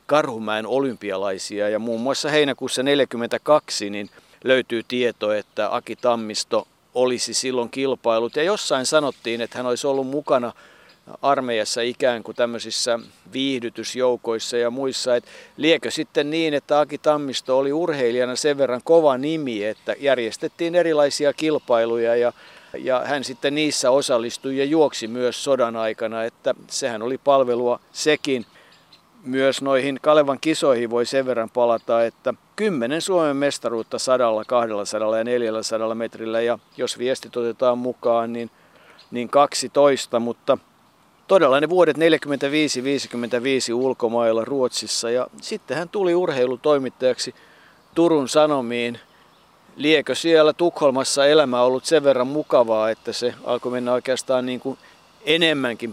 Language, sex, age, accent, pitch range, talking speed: Finnish, male, 50-69, native, 115-145 Hz, 125 wpm